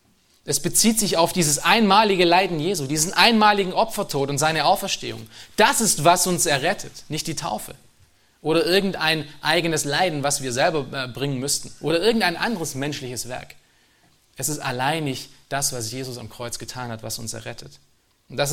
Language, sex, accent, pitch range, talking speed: German, male, German, 130-170 Hz, 170 wpm